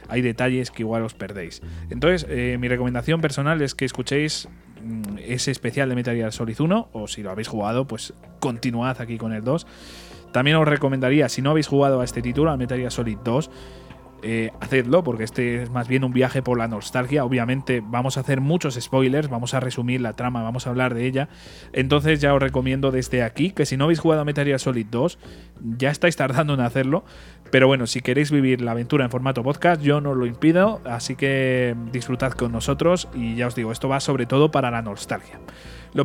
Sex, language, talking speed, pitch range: male, Spanish, 210 wpm, 120-145 Hz